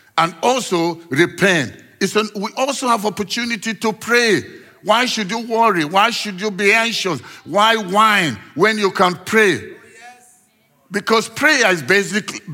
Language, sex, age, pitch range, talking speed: English, male, 50-69, 160-210 Hz, 145 wpm